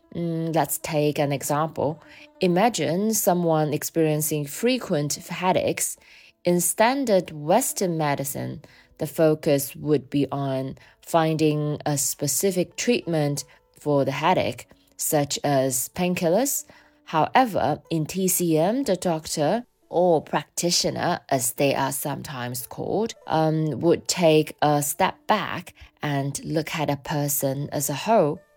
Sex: female